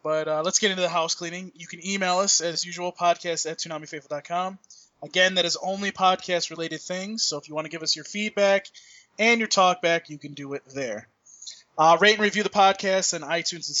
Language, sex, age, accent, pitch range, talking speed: English, male, 20-39, American, 155-190 Hz, 215 wpm